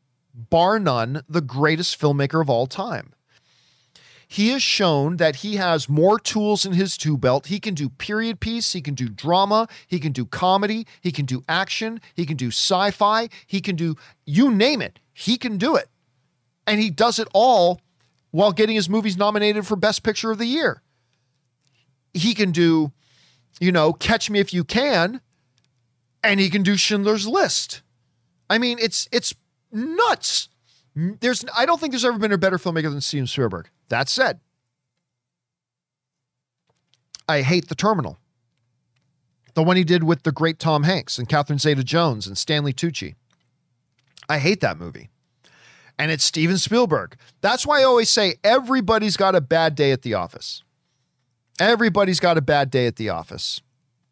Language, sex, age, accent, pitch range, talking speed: English, male, 40-59, American, 135-205 Hz, 170 wpm